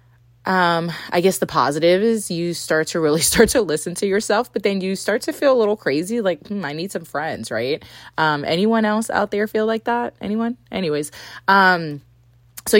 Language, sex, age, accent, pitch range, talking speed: English, female, 20-39, American, 150-195 Hz, 200 wpm